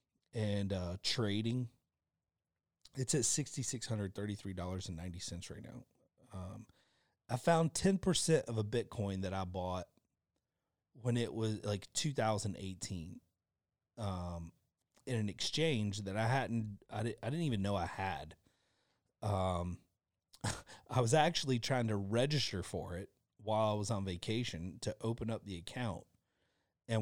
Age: 30-49